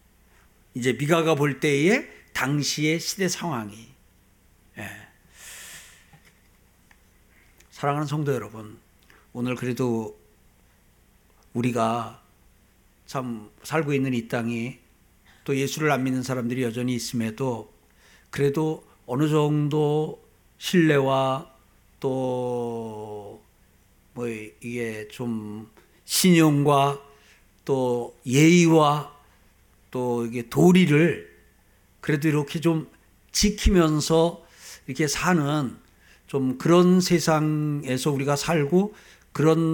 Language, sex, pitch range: Korean, male, 115-155 Hz